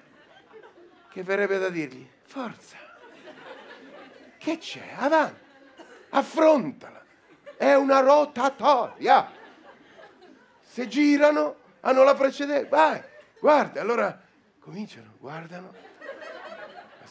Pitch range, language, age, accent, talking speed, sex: 210-300 Hz, Italian, 50-69, native, 80 wpm, male